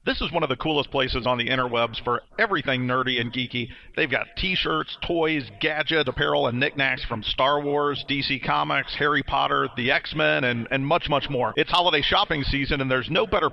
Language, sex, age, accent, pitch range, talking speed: English, male, 40-59, American, 115-140 Hz, 200 wpm